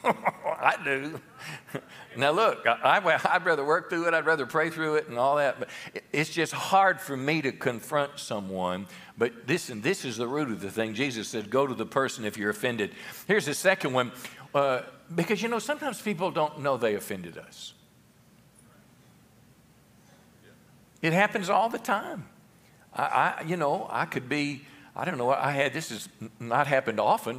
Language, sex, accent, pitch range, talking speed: English, male, American, 125-175 Hz, 180 wpm